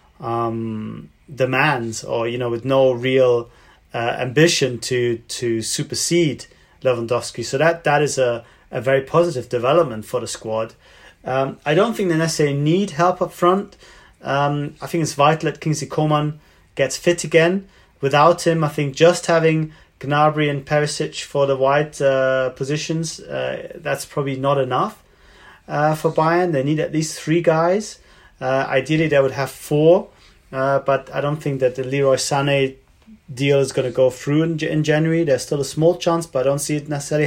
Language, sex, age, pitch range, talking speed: English, male, 30-49, 130-155 Hz, 175 wpm